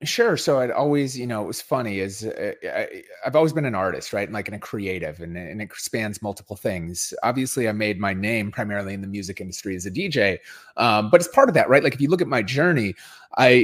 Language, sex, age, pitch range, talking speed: English, male, 30-49, 100-130 Hz, 250 wpm